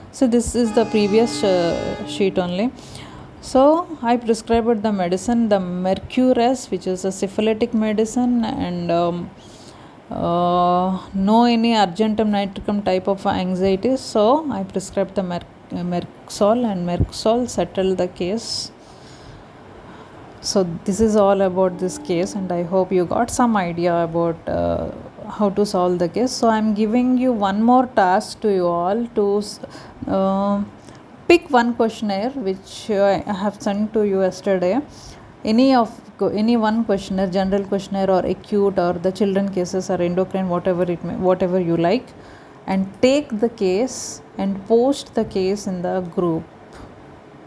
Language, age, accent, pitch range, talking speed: Hindi, 30-49, native, 185-230 Hz, 150 wpm